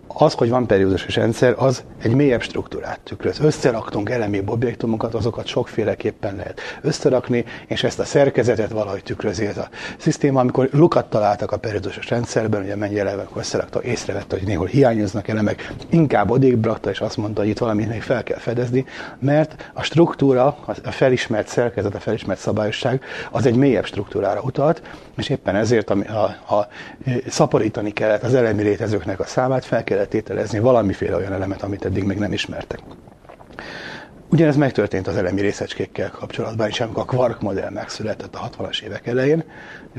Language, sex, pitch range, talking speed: Hungarian, male, 105-130 Hz, 155 wpm